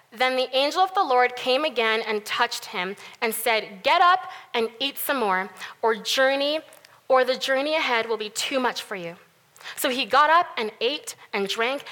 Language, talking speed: English, 195 wpm